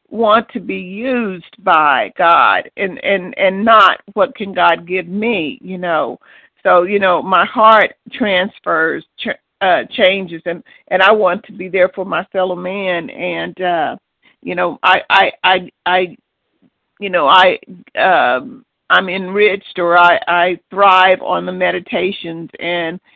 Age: 50-69